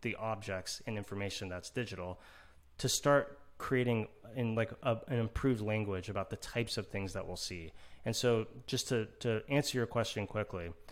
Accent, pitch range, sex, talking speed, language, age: American, 95-115 Hz, male, 175 wpm, English, 30-49